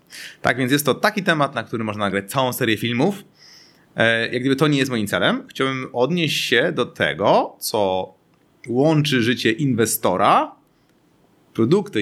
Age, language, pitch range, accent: 30-49, Polish, 105-140 Hz, native